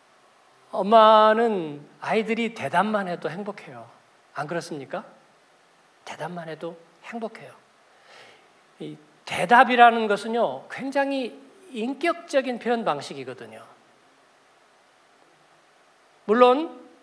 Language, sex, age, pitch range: Korean, male, 40-59, 205-260 Hz